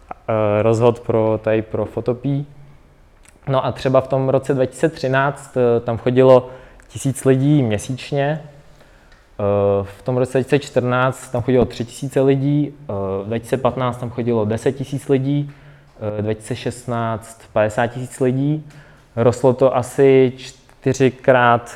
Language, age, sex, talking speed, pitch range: Czech, 20-39, male, 115 wpm, 115-130 Hz